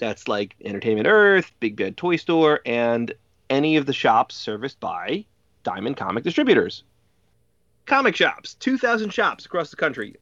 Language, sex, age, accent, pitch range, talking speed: English, male, 30-49, American, 100-150 Hz, 145 wpm